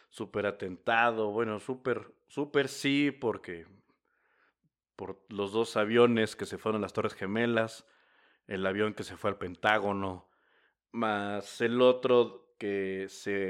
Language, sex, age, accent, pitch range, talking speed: Spanish, male, 50-69, Mexican, 105-130 Hz, 135 wpm